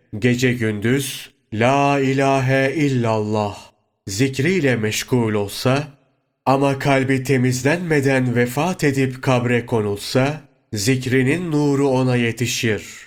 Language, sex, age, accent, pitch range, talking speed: Turkish, male, 30-49, native, 115-140 Hz, 85 wpm